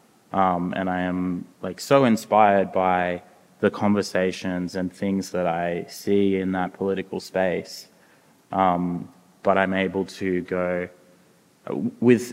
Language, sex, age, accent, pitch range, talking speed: English, male, 20-39, Australian, 95-100 Hz, 125 wpm